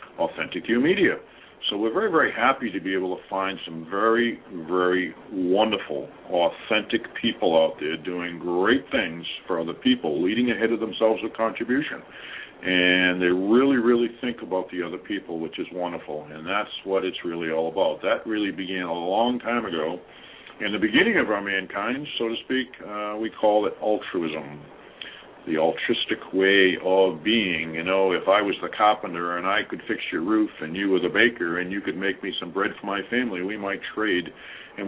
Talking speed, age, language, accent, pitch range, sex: 190 wpm, 50-69, English, American, 90-115 Hz, male